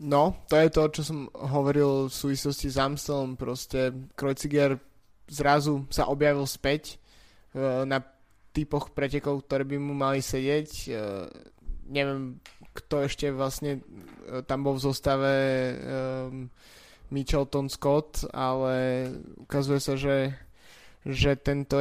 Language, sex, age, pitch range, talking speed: Slovak, male, 20-39, 130-140 Hz, 120 wpm